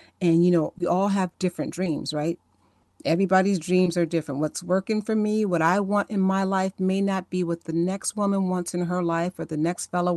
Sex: female